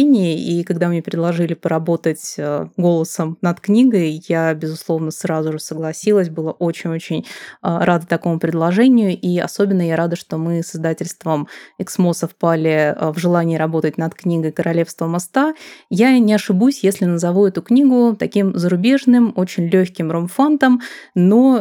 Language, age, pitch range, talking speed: Russian, 20-39, 165-200 Hz, 135 wpm